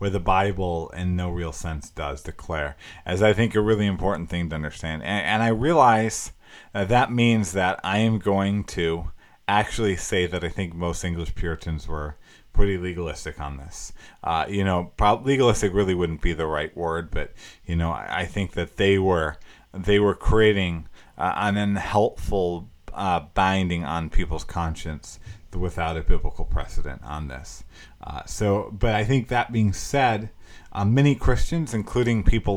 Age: 30-49